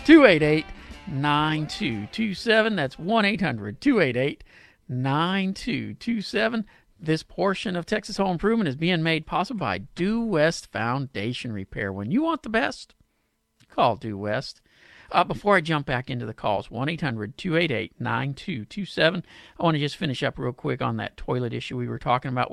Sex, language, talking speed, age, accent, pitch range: male, English, 155 wpm, 50-69, American, 125-175 Hz